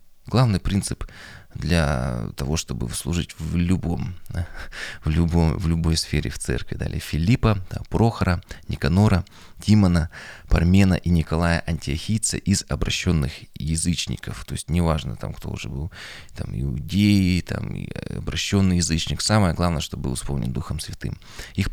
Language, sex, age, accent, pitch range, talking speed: Russian, male, 20-39, native, 80-100 Hz, 135 wpm